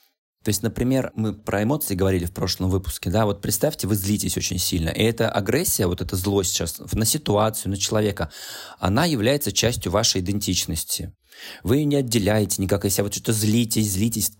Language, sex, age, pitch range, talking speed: Russian, male, 20-39, 95-115 Hz, 180 wpm